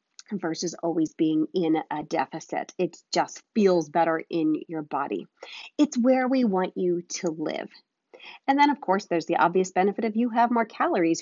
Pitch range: 165-230 Hz